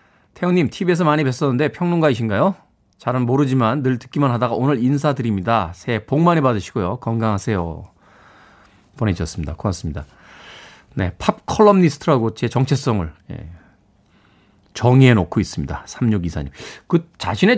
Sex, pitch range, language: male, 105-165 Hz, Korean